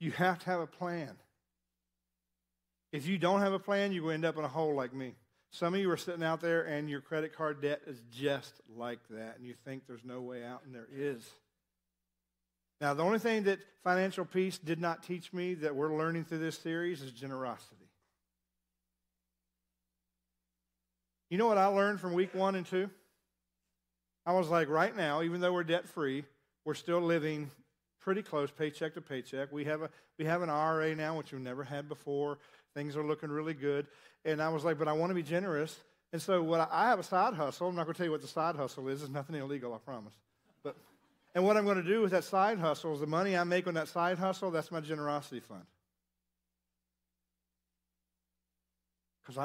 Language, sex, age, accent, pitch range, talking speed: English, male, 50-69, American, 115-170 Hz, 210 wpm